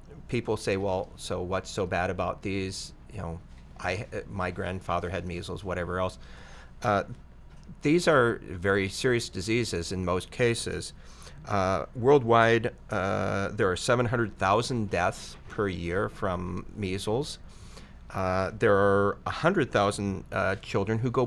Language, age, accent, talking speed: English, 40-59, American, 135 wpm